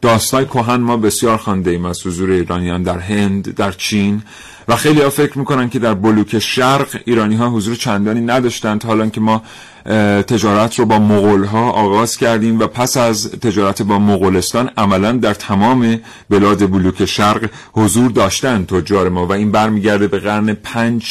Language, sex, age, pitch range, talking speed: Persian, male, 40-59, 105-125 Hz, 165 wpm